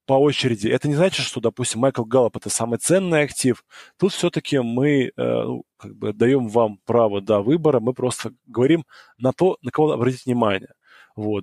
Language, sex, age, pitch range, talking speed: Russian, male, 20-39, 120-160 Hz, 195 wpm